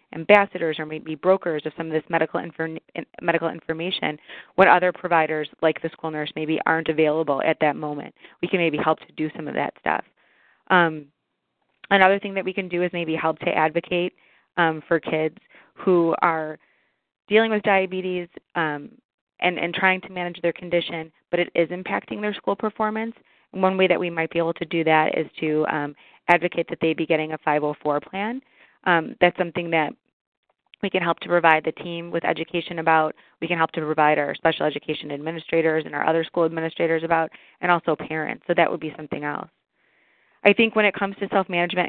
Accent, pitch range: American, 155-175 Hz